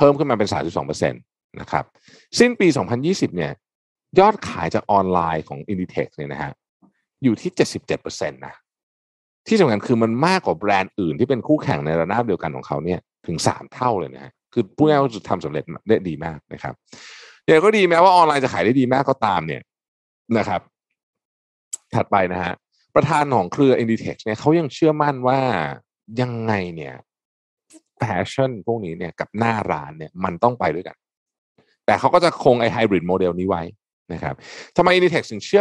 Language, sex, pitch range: Thai, male, 90-140 Hz